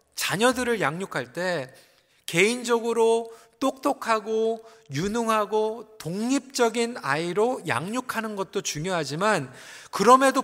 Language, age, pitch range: Korean, 40-59, 180-245 Hz